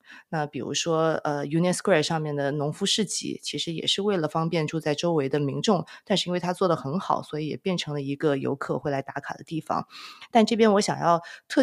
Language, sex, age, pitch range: Chinese, female, 20-39, 150-195 Hz